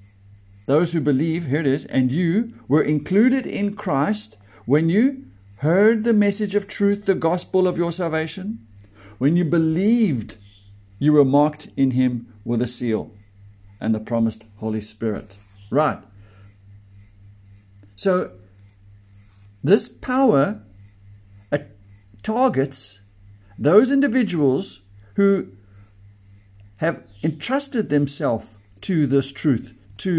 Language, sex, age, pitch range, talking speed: English, male, 60-79, 100-165 Hz, 110 wpm